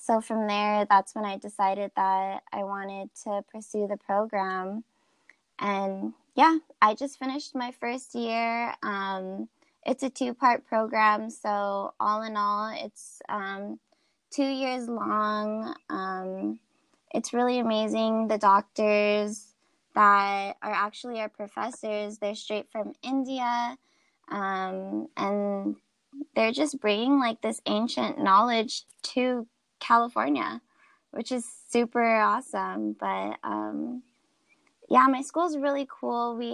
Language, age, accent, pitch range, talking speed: English, 20-39, American, 205-250 Hz, 125 wpm